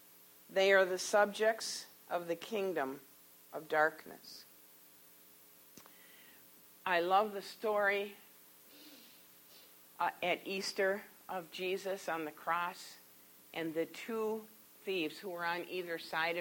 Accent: American